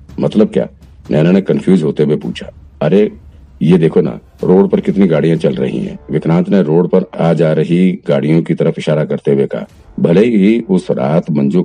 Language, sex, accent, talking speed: Hindi, male, native, 195 wpm